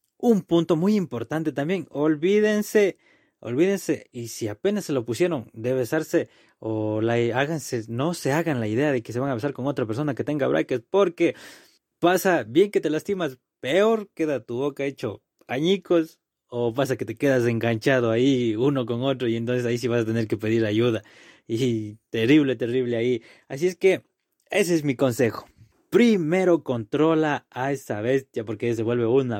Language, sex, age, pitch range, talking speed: Spanish, male, 20-39, 120-170 Hz, 175 wpm